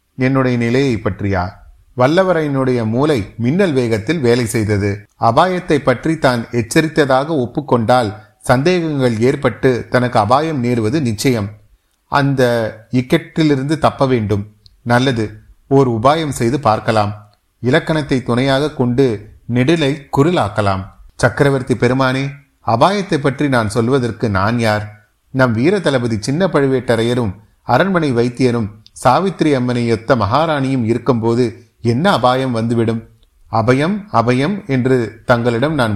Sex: male